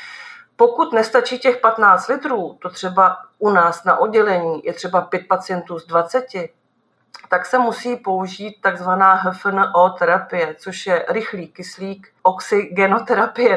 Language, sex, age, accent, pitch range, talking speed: Czech, female, 40-59, native, 175-200 Hz, 130 wpm